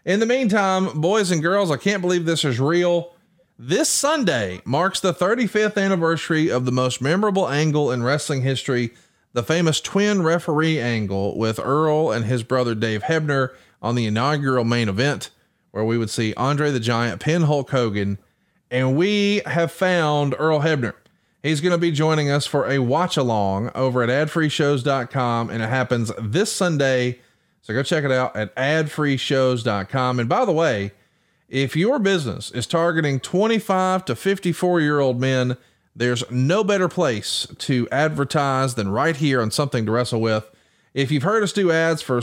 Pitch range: 125-170 Hz